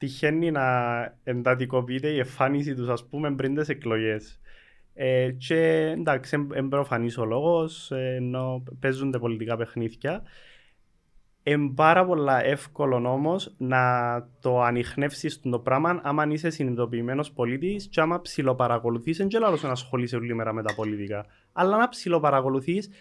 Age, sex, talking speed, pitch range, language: 20-39, male, 135 wpm, 125-160 Hz, Greek